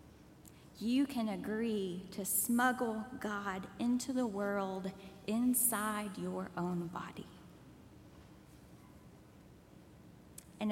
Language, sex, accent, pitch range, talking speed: English, female, American, 210-265 Hz, 80 wpm